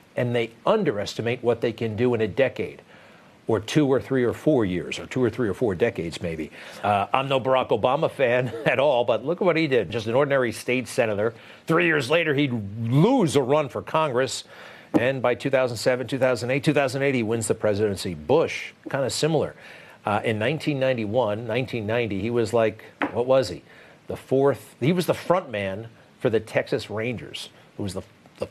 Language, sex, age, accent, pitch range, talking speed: English, male, 50-69, American, 105-135 Hz, 190 wpm